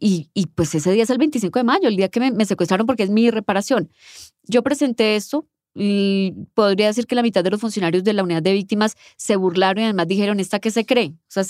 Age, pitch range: 20-39, 190-260 Hz